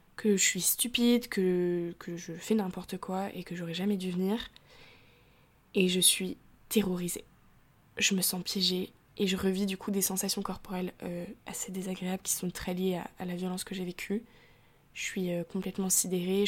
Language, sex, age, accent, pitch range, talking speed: French, female, 20-39, French, 175-200 Hz, 185 wpm